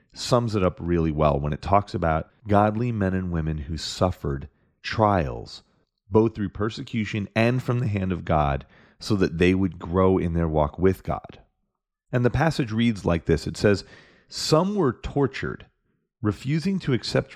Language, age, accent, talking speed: English, 30-49, American, 170 wpm